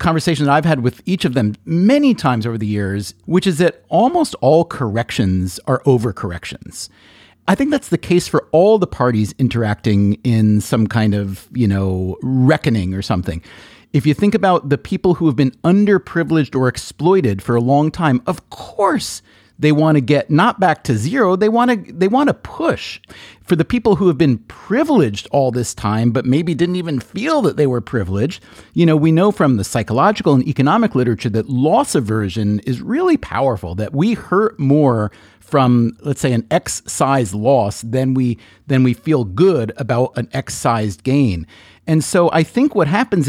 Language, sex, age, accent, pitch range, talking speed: English, male, 40-59, American, 115-175 Hz, 185 wpm